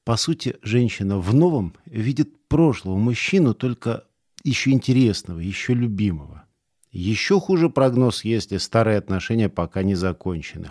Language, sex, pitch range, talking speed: Russian, male, 95-125 Hz, 125 wpm